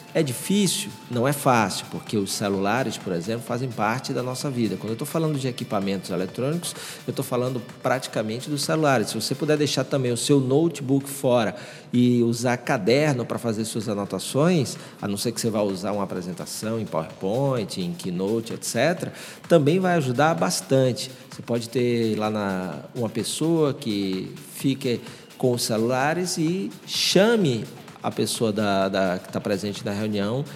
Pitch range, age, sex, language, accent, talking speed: 115-150 Hz, 40-59, male, Portuguese, Brazilian, 160 wpm